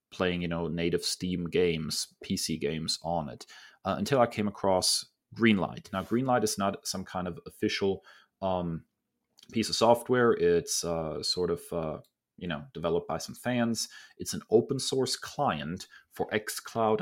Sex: male